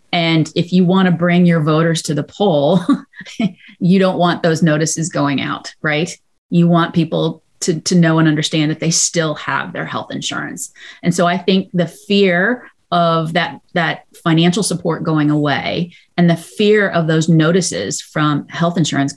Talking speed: 175 wpm